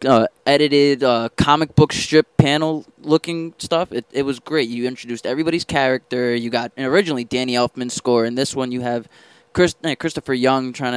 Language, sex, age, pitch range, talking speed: English, male, 20-39, 125-150 Hz, 180 wpm